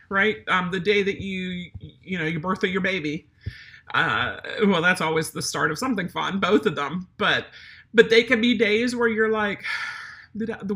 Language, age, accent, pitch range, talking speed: English, 40-59, American, 185-240 Hz, 195 wpm